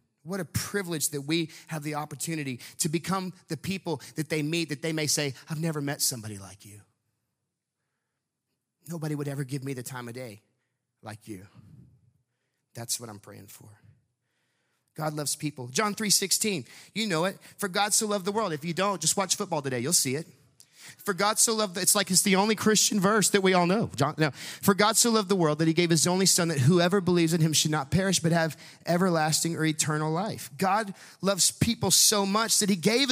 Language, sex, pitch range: English, male, 140-200 Hz